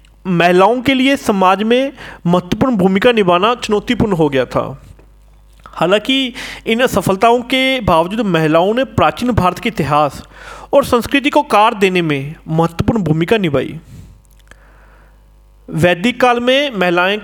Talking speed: 125 wpm